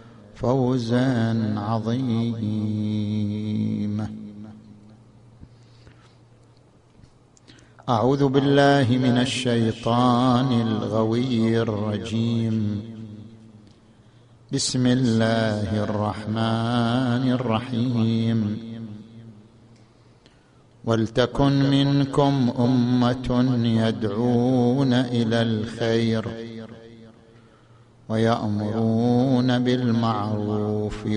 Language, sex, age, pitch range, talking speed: Arabic, male, 50-69, 110-120 Hz, 40 wpm